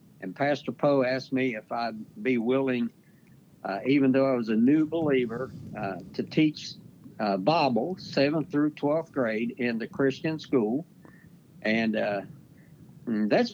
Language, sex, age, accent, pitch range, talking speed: English, male, 60-79, American, 125-160 Hz, 145 wpm